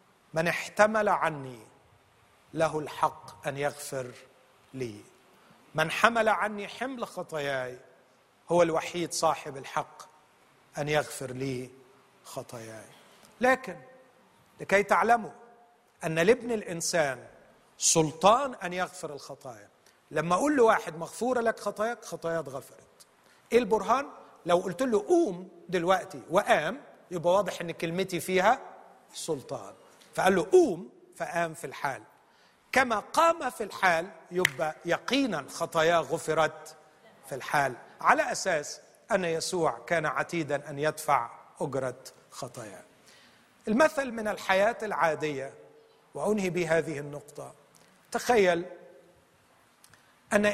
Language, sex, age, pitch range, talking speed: Arabic, male, 40-59, 155-210 Hz, 105 wpm